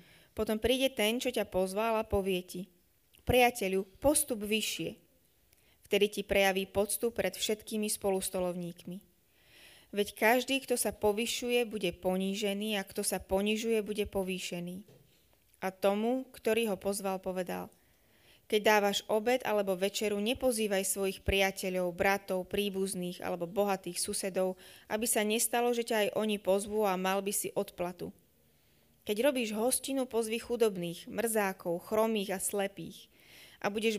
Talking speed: 130 wpm